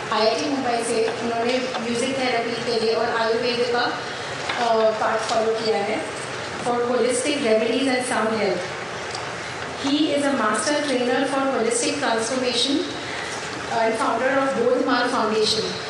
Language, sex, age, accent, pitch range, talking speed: Hindi, female, 30-49, native, 230-275 Hz, 135 wpm